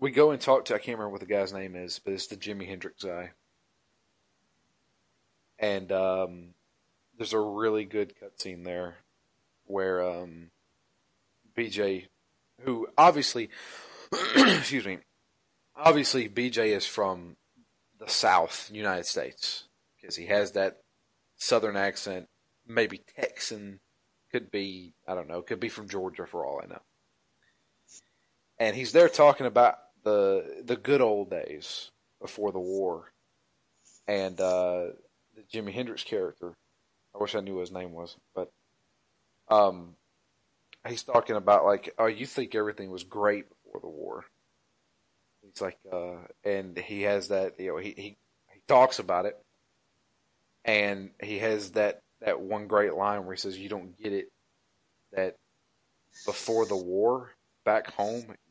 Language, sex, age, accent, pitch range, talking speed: English, male, 30-49, American, 90-110 Hz, 145 wpm